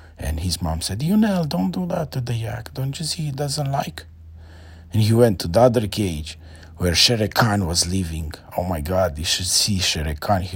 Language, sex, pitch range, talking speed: English, male, 90-125 Hz, 215 wpm